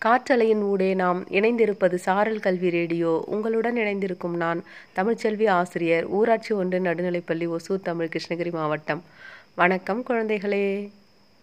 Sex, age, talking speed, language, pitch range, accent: female, 30-49, 110 wpm, Tamil, 175-215 Hz, native